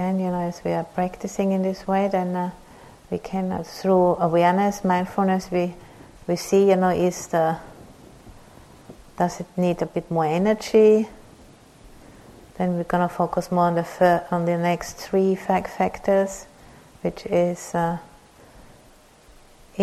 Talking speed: 145 wpm